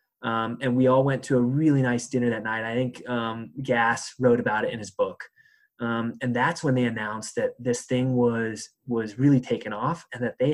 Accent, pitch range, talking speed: American, 115-130 Hz, 220 wpm